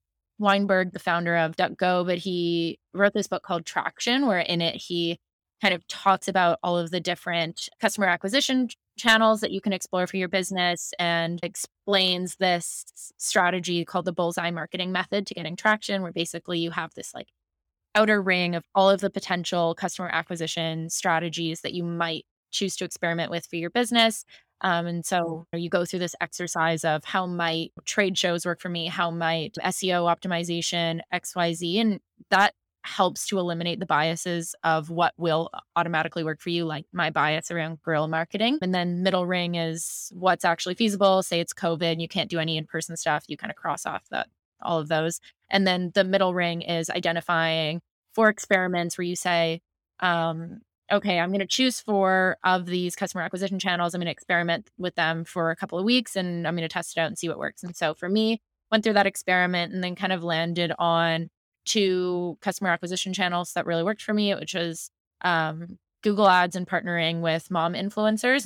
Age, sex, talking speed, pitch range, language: 20-39, female, 195 wpm, 170-190 Hz, English